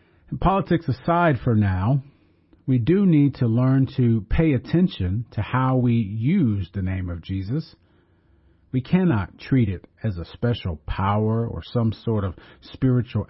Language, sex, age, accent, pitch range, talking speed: English, male, 40-59, American, 90-130 Hz, 150 wpm